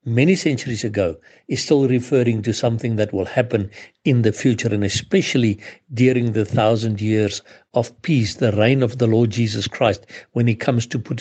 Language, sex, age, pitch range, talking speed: English, male, 60-79, 110-135 Hz, 180 wpm